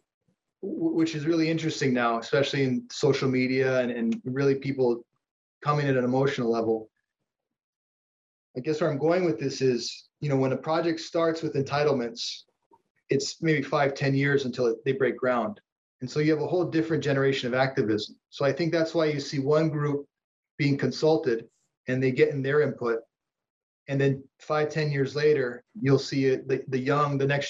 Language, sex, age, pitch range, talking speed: English, male, 30-49, 130-155 Hz, 180 wpm